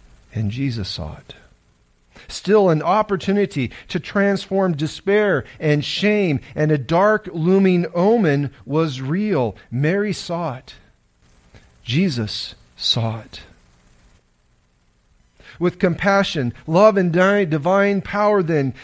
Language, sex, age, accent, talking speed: English, male, 40-59, American, 100 wpm